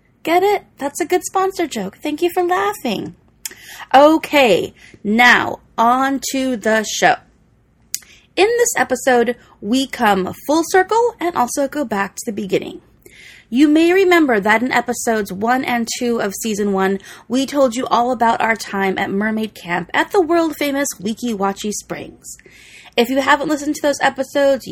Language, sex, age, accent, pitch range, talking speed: English, female, 20-39, American, 195-280 Hz, 165 wpm